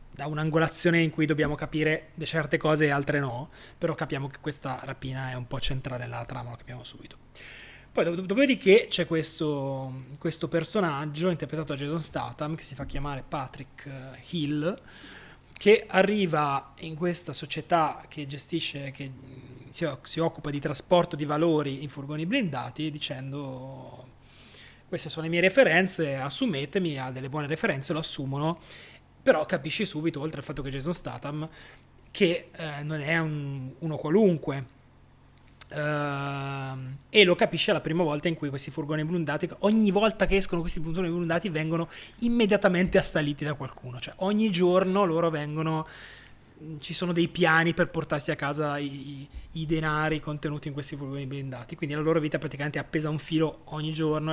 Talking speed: 160 wpm